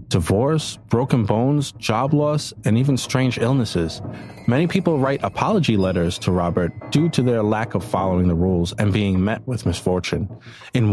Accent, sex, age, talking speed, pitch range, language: American, male, 30-49, 165 wpm, 100-135 Hz, English